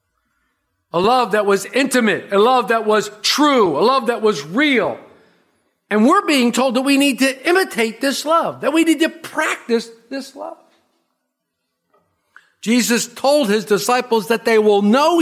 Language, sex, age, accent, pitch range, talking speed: English, male, 50-69, American, 215-285 Hz, 160 wpm